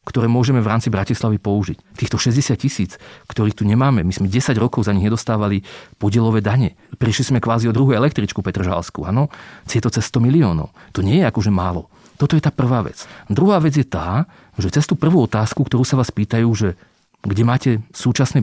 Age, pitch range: 40-59, 105-135 Hz